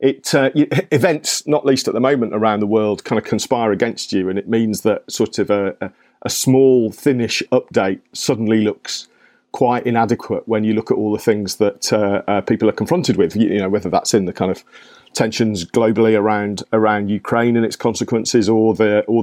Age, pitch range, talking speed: 40-59, 100-130 Hz, 205 wpm